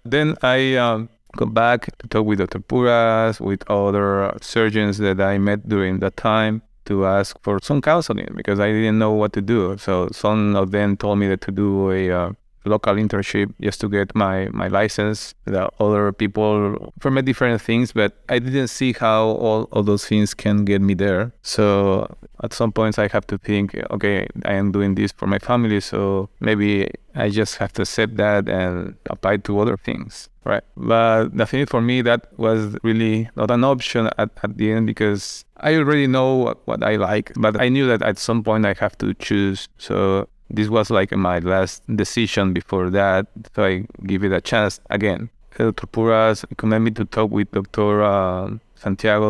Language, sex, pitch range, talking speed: English, male, 100-115 Hz, 190 wpm